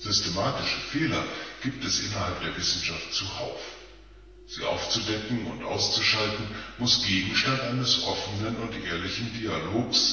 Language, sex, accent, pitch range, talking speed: English, female, German, 95-135 Hz, 115 wpm